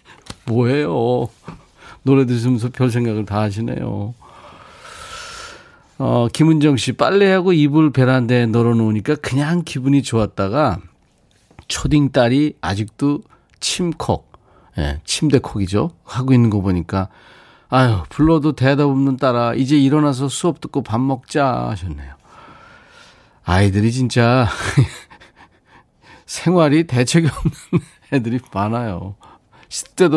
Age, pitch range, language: 40-59, 105-145 Hz, Korean